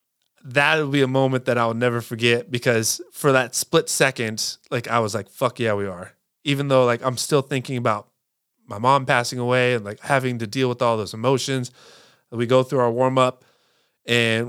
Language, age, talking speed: English, 20-39, 205 wpm